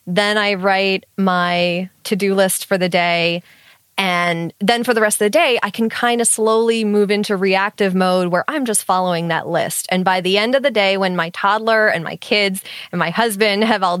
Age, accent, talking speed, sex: 20-39, American, 215 wpm, female